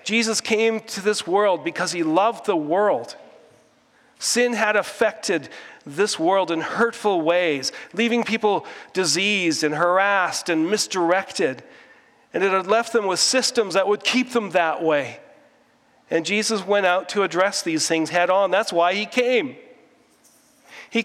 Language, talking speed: English, 150 wpm